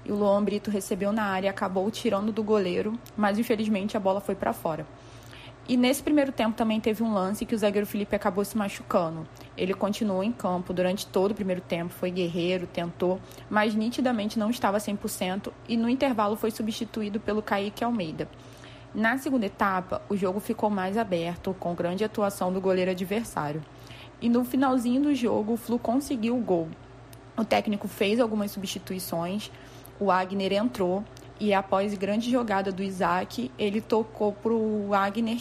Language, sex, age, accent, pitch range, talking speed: Portuguese, female, 20-39, Brazilian, 185-225 Hz, 170 wpm